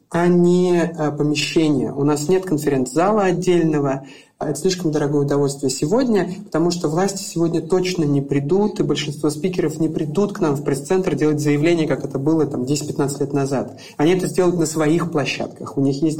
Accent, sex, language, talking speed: native, male, Russian, 170 wpm